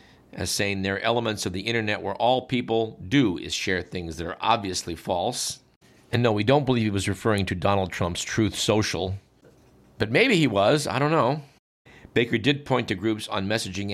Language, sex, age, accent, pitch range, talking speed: English, male, 50-69, American, 95-115 Hz, 200 wpm